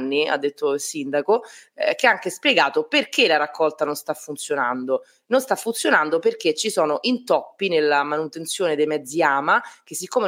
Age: 30-49